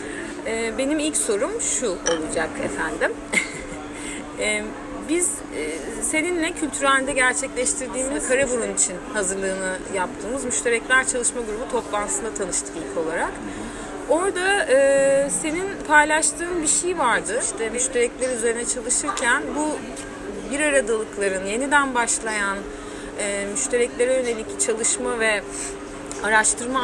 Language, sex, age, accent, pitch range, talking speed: Turkish, female, 30-49, native, 200-265 Hz, 90 wpm